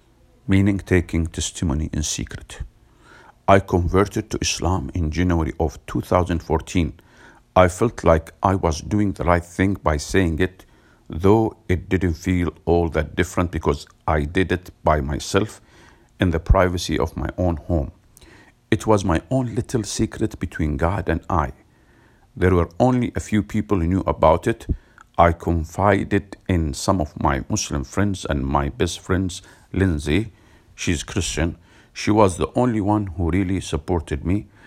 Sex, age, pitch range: male, 50-69, 80-100 Hz